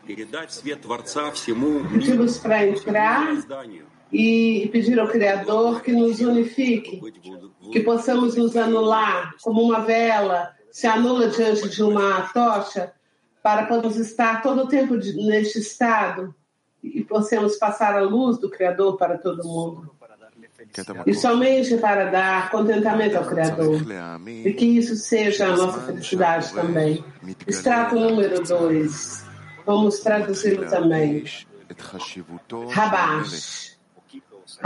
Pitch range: 175-235 Hz